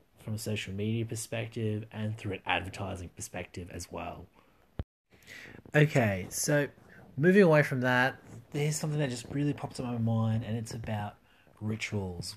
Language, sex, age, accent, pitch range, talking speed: English, male, 20-39, Australian, 100-125 Hz, 150 wpm